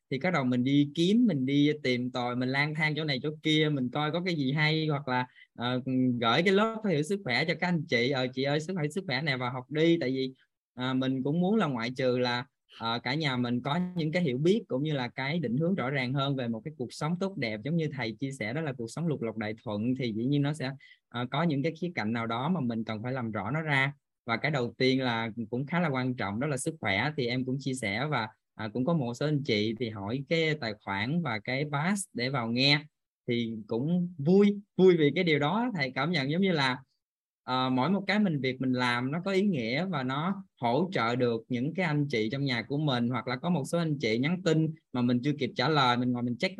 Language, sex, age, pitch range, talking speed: Vietnamese, male, 10-29, 125-160 Hz, 265 wpm